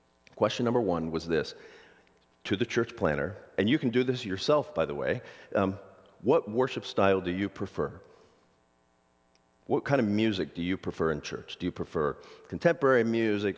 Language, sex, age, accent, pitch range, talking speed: English, male, 40-59, American, 80-120 Hz, 170 wpm